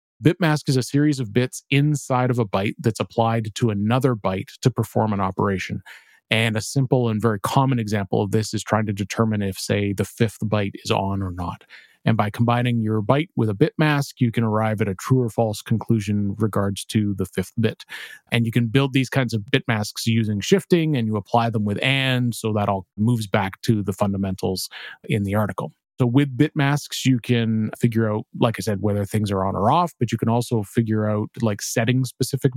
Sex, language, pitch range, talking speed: male, English, 105-130 Hz, 215 wpm